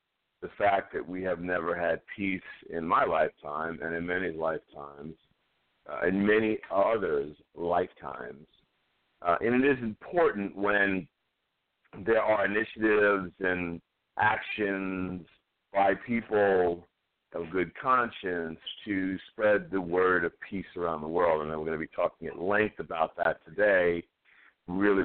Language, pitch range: English, 80-100 Hz